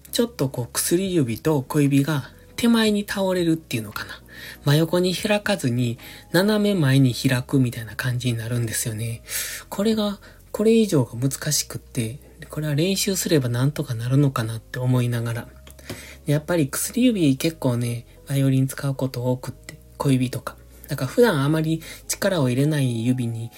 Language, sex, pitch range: Japanese, male, 120-155 Hz